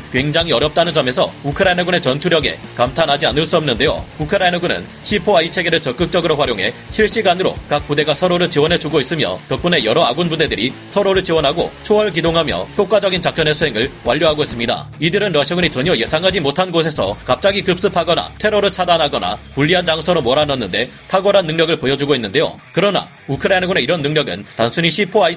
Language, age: Korean, 30-49